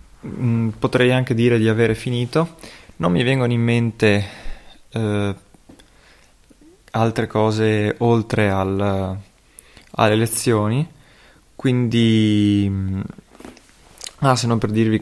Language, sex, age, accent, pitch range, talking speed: Italian, male, 20-39, native, 100-120 Hz, 90 wpm